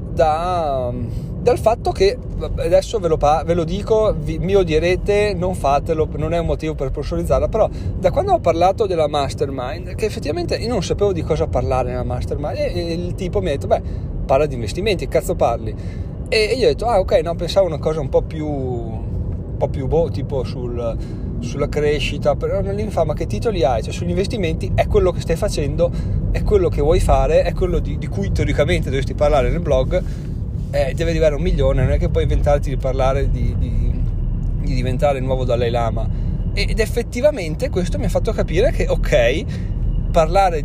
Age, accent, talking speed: 30-49, native, 195 wpm